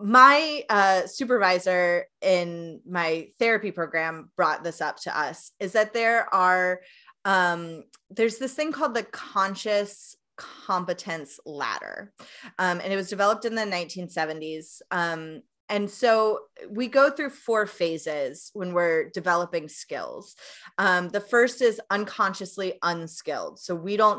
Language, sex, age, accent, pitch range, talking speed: English, female, 20-39, American, 170-230 Hz, 135 wpm